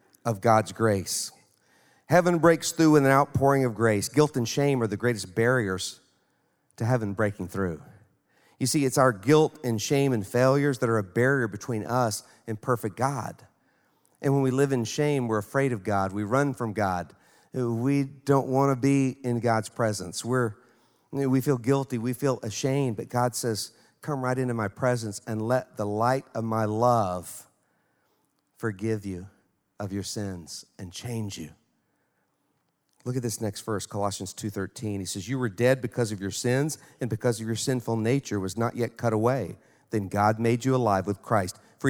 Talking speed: 180 wpm